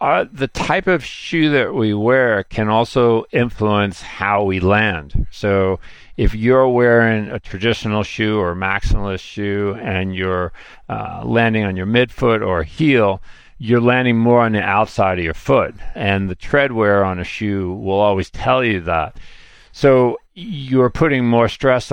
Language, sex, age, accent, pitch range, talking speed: English, male, 50-69, American, 100-120 Hz, 160 wpm